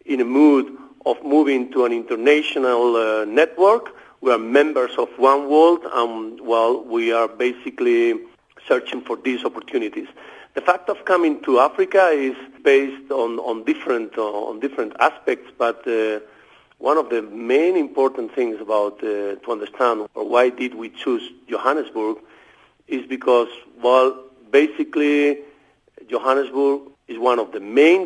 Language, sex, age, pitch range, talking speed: English, male, 50-69, 120-155 Hz, 150 wpm